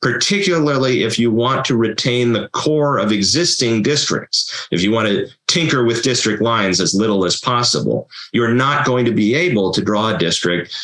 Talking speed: 185 wpm